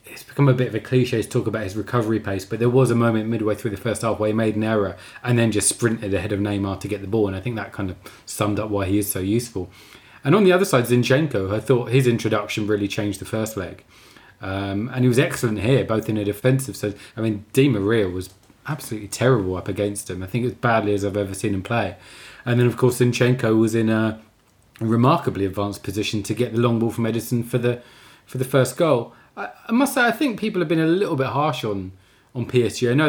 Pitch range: 105-125 Hz